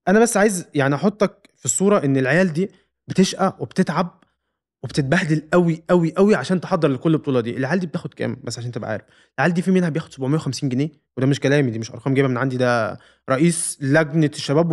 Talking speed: 200 wpm